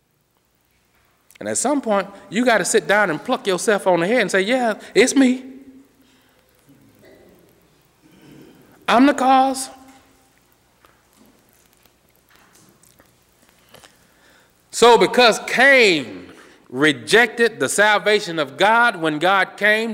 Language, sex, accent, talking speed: English, male, American, 100 wpm